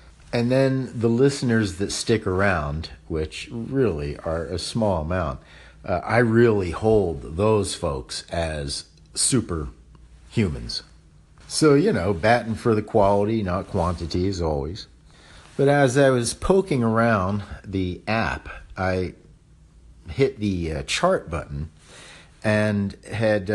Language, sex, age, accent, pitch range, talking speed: English, male, 50-69, American, 80-115 Hz, 125 wpm